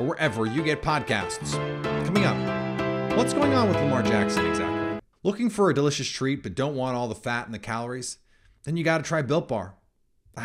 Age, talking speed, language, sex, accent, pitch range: 30-49, 205 wpm, English, male, American, 110-155 Hz